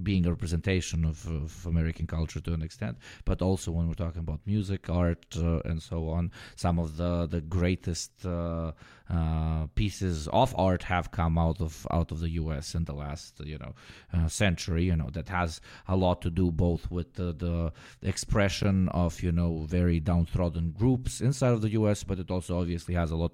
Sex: male